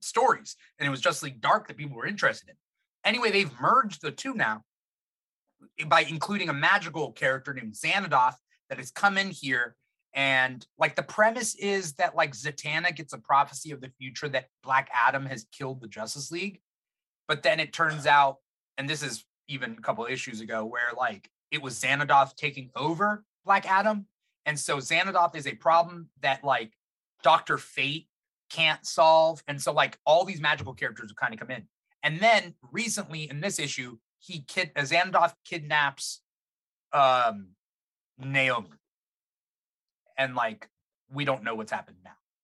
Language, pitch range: English, 135-170 Hz